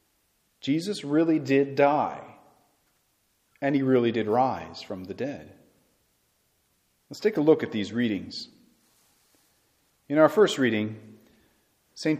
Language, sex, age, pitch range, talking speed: English, male, 40-59, 115-155 Hz, 120 wpm